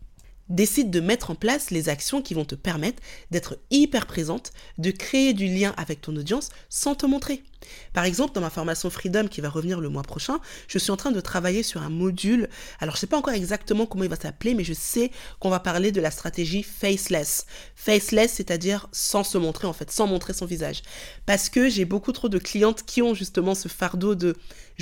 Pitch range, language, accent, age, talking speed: 175-220 Hz, French, French, 20-39, 220 wpm